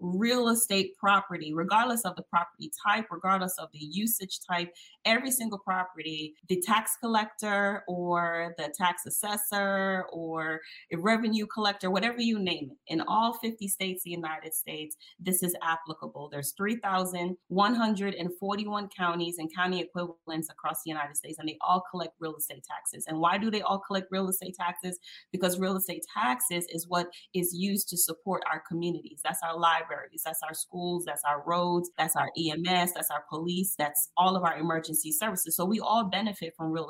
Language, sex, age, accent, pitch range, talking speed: English, female, 30-49, American, 165-200 Hz, 170 wpm